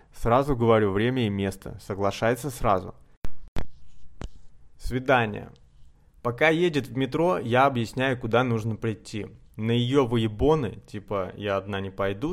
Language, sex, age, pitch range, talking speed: Russian, male, 20-39, 105-130 Hz, 120 wpm